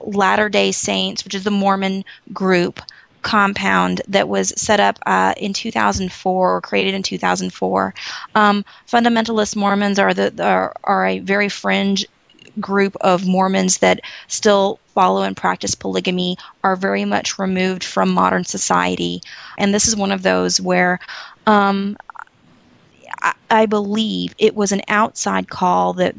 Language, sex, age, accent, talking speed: English, female, 20-39, American, 140 wpm